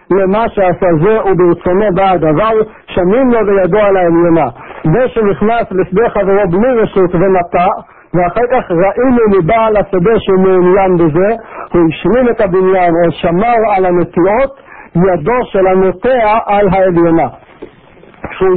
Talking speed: 130 wpm